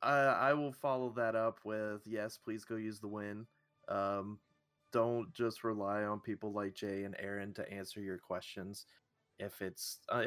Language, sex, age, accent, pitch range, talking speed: English, male, 20-39, American, 95-115 Hz, 170 wpm